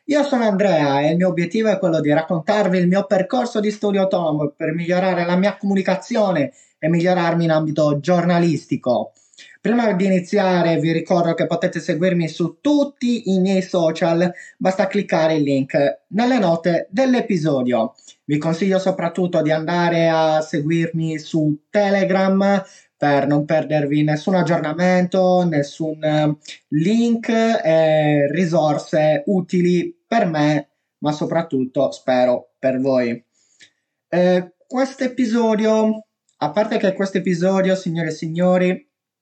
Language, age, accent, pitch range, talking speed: Italian, 20-39, native, 160-200 Hz, 130 wpm